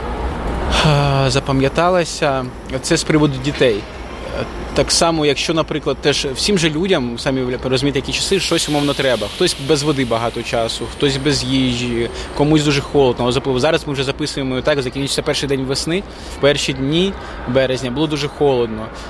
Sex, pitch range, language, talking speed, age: male, 125-150 Hz, Ukrainian, 150 wpm, 20-39